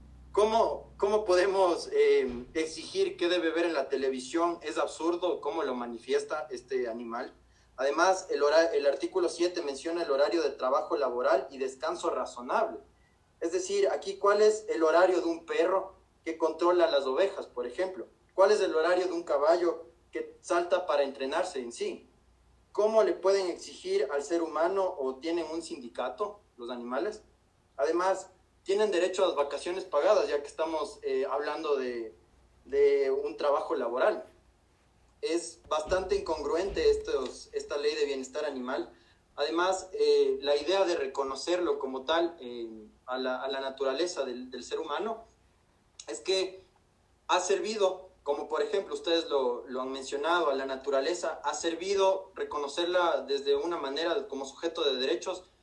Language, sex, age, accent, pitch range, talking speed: Spanish, male, 30-49, Mexican, 145-205 Hz, 155 wpm